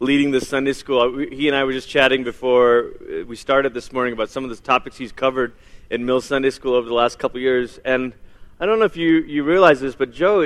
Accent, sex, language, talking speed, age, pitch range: American, male, English, 260 wpm, 30-49, 125-150 Hz